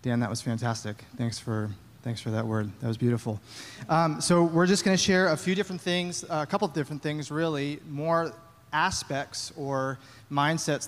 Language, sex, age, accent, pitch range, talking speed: English, male, 30-49, American, 130-155 Hz, 180 wpm